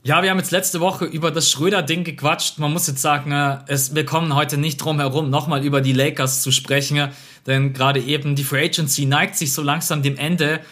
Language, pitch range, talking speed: German, 130-155 Hz, 205 wpm